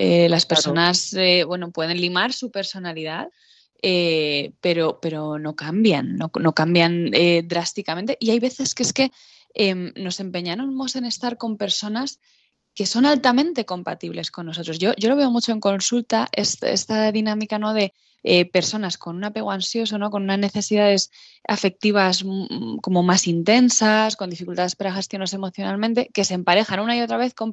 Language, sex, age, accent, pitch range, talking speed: Spanish, female, 20-39, Spanish, 175-220 Hz, 170 wpm